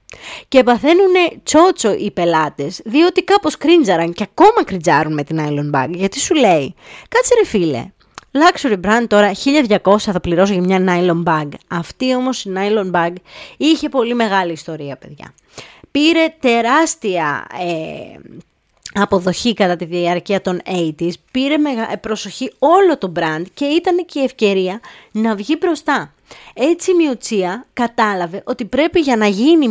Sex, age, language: female, 20-39, Greek